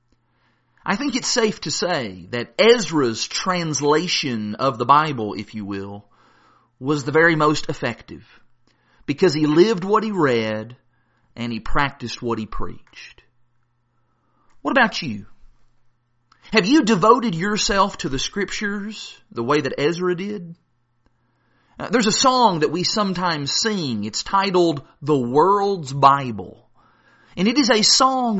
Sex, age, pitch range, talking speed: male, 40-59, 120-190 Hz, 135 wpm